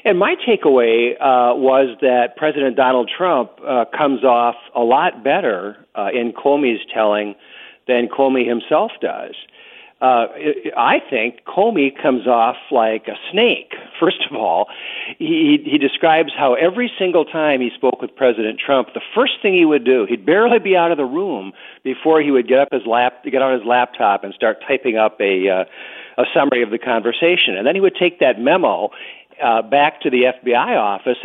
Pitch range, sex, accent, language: 115-160 Hz, male, American, English